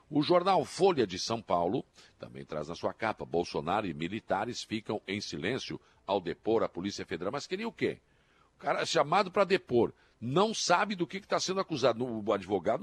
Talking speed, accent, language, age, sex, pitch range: 195 wpm, Brazilian, Portuguese, 60-79, male, 100-135 Hz